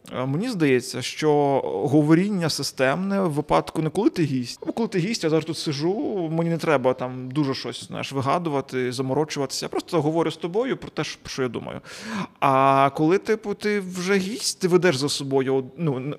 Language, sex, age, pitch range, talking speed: Ukrainian, male, 20-39, 135-175 Hz, 180 wpm